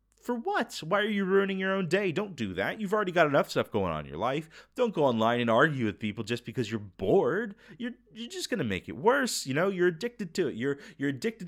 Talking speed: 260 wpm